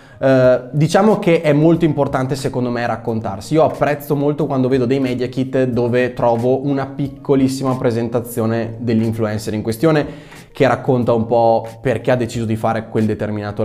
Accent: native